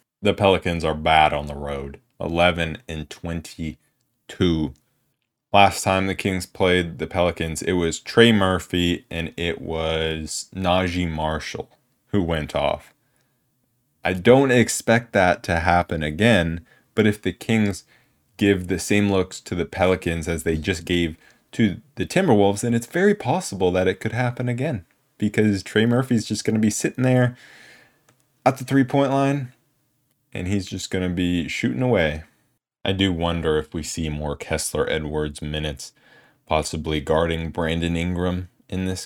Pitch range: 80-105 Hz